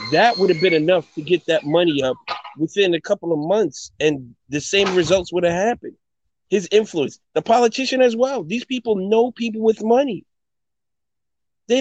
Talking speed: 180 wpm